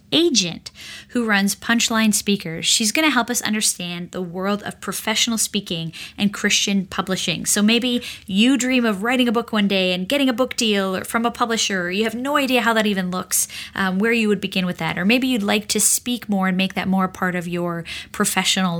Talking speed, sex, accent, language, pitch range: 215 wpm, female, American, English, 190-230 Hz